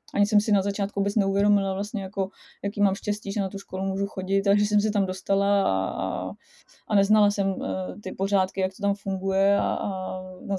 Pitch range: 195-210 Hz